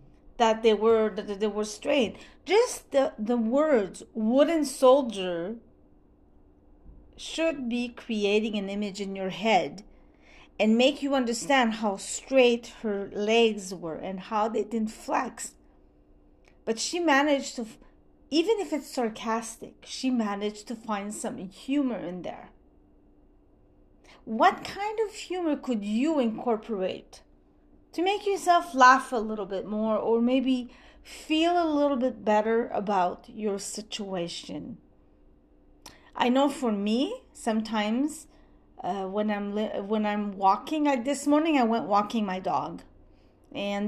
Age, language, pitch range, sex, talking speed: 40-59, English, 205-275 Hz, female, 130 wpm